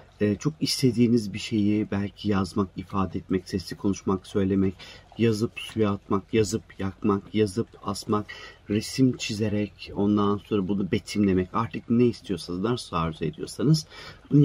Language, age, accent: Turkish, 40-59, native